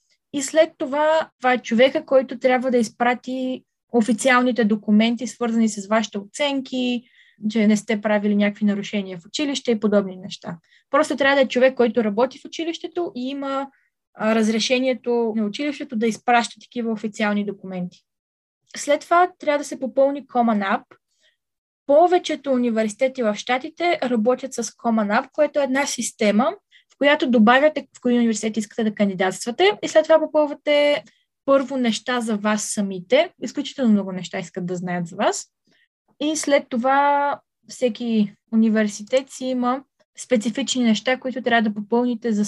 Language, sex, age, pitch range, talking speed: Bulgarian, female, 20-39, 220-275 Hz, 150 wpm